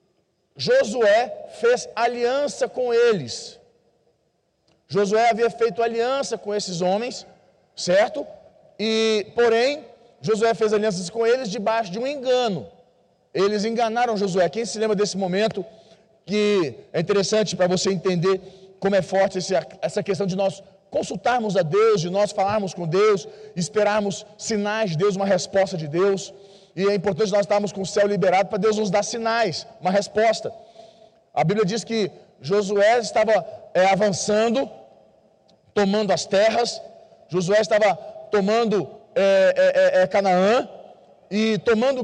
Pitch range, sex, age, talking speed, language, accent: 195-235 Hz, male, 40-59, 140 wpm, Portuguese, Brazilian